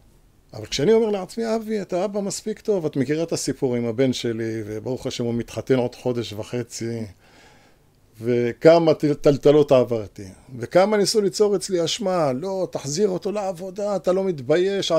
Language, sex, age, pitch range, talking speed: Hebrew, male, 50-69, 125-195 Hz, 150 wpm